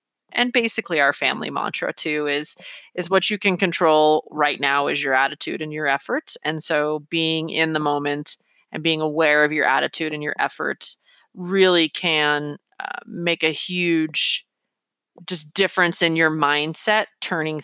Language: English